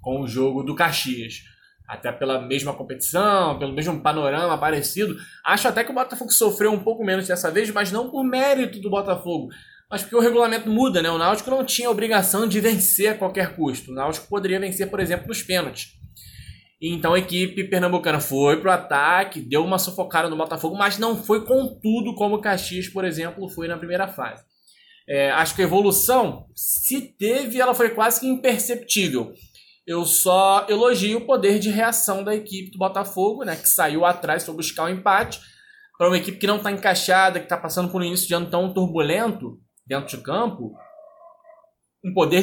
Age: 20-39